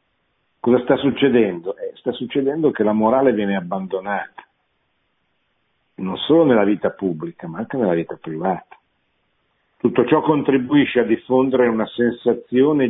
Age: 50-69